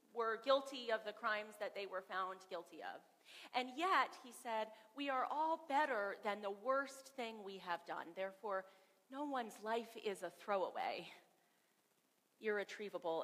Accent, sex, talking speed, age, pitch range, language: American, female, 155 wpm, 40-59, 205-280 Hz, English